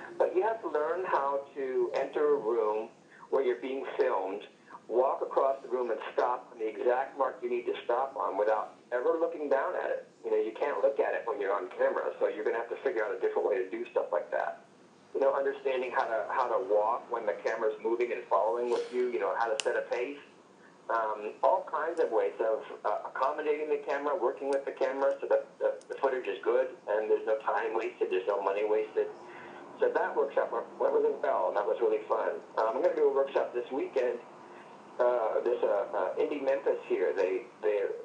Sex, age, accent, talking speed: male, 50-69, American, 225 wpm